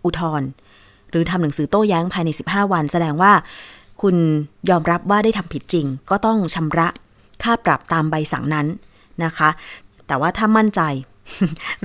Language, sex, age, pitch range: Thai, female, 20-39, 155-205 Hz